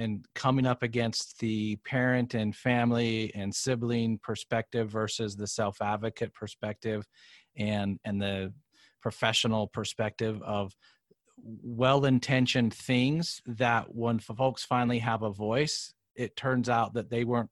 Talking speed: 125 wpm